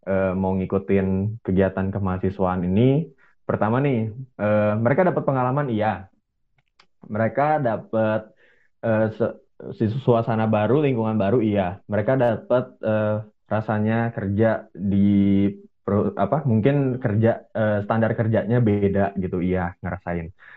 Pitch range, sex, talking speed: 100-120 Hz, male, 110 wpm